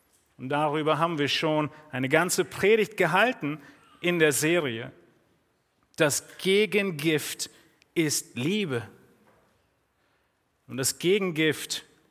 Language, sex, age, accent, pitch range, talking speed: German, male, 40-59, German, 140-200 Hz, 95 wpm